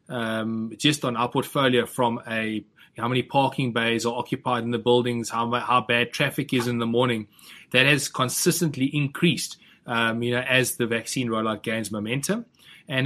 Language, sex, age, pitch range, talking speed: English, male, 20-39, 115-135 Hz, 175 wpm